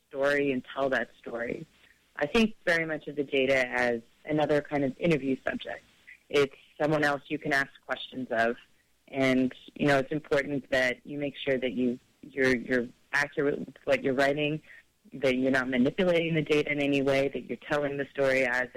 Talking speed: 190 wpm